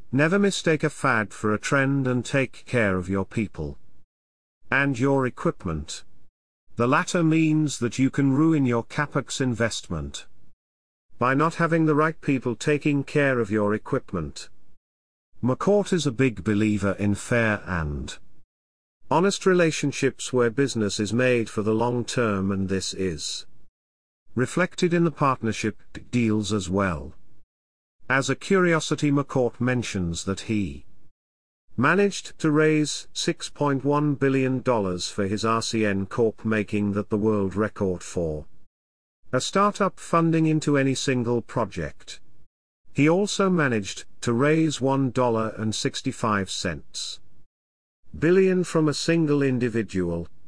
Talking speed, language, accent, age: 125 wpm, English, British, 50-69